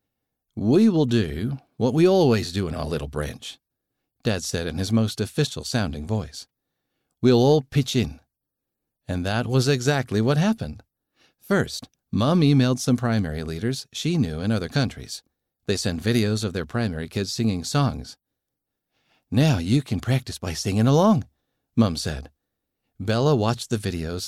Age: 50-69